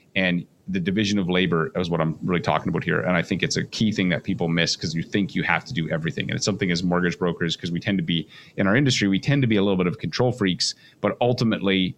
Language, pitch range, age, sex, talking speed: English, 95-115 Hz, 30-49, male, 280 wpm